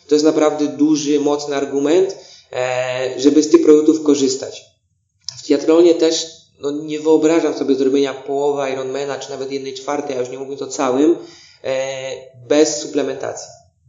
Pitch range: 140-175 Hz